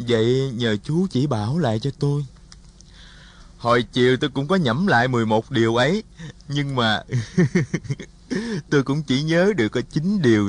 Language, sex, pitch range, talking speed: Vietnamese, male, 120-180 Hz, 160 wpm